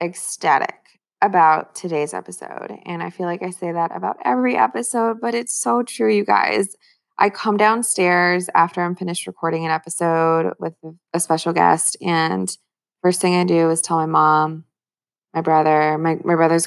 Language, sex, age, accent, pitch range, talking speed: English, female, 20-39, American, 165-200 Hz, 170 wpm